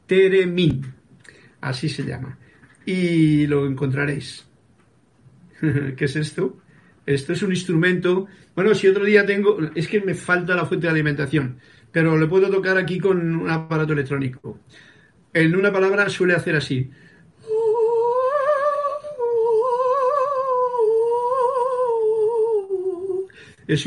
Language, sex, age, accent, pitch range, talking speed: Spanish, male, 50-69, Spanish, 150-200 Hz, 110 wpm